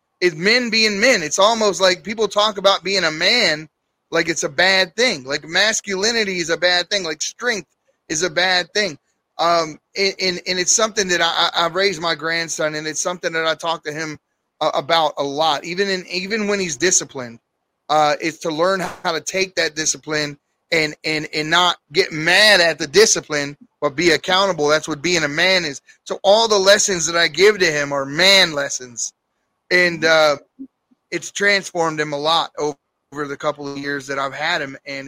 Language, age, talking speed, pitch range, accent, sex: English, 30-49, 200 wpm, 155-195 Hz, American, male